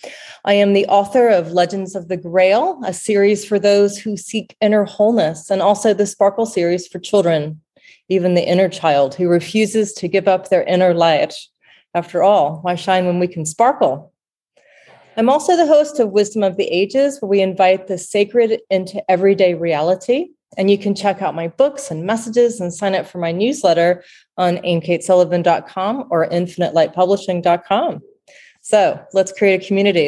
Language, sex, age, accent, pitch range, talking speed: English, female, 30-49, American, 180-215 Hz, 170 wpm